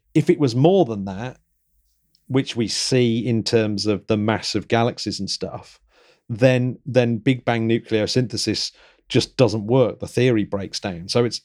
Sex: male